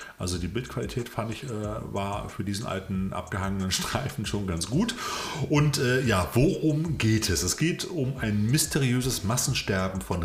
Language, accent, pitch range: German, German, 95-130 Hz